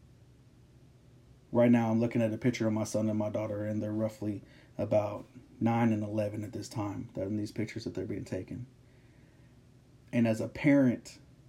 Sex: male